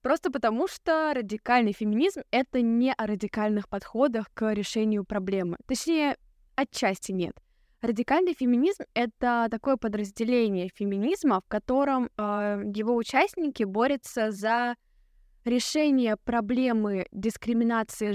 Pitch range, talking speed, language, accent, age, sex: 210-255 Hz, 105 wpm, Russian, native, 10-29, female